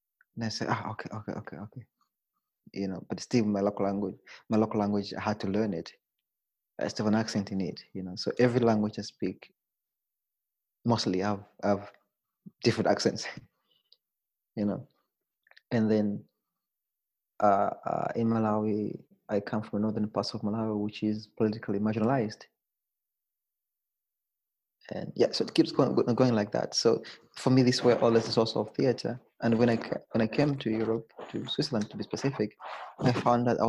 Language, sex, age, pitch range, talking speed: German, male, 20-39, 105-120 Hz, 180 wpm